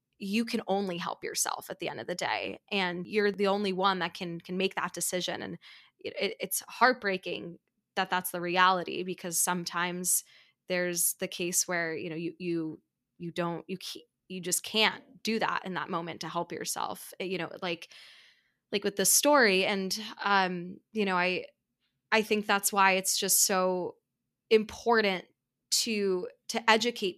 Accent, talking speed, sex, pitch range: American, 170 wpm, female, 180-210 Hz